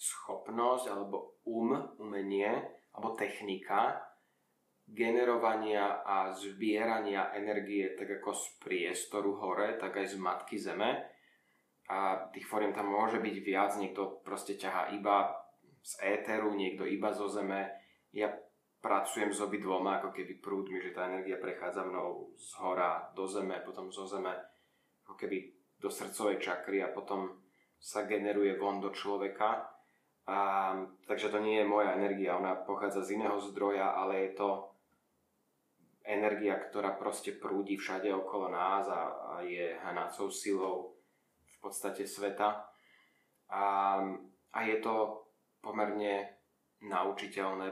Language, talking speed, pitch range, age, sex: Slovak, 130 wpm, 95-105 Hz, 20-39, male